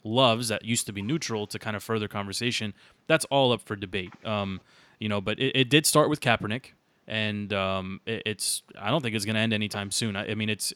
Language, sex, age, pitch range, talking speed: English, male, 20-39, 105-135 Hz, 235 wpm